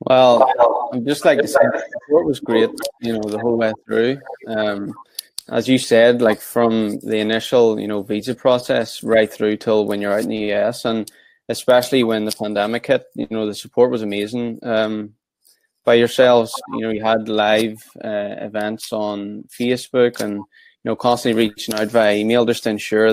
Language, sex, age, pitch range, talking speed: English, male, 20-39, 110-125 Hz, 185 wpm